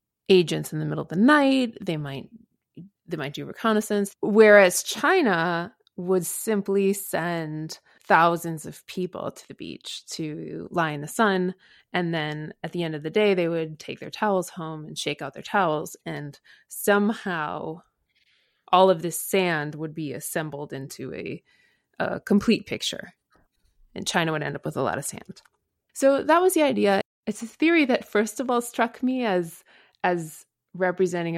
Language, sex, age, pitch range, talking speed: English, female, 20-39, 160-205 Hz, 170 wpm